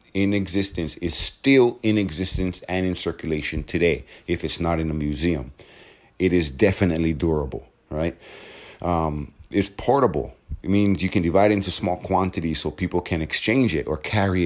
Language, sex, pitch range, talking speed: English, male, 80-95 Hz, 165 wpm